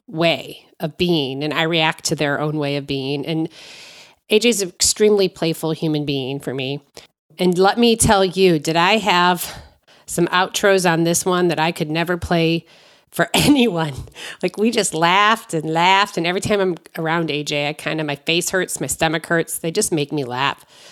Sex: female